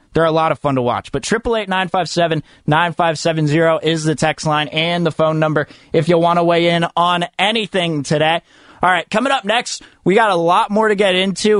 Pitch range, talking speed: 125-175 Hz, 205 wpm